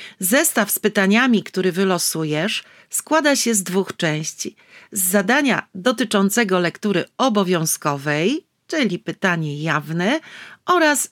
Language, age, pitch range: Polish, 40-59, 175-230 Hz